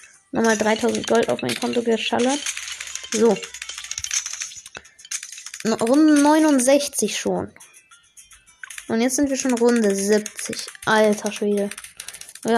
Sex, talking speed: female, 100 wpm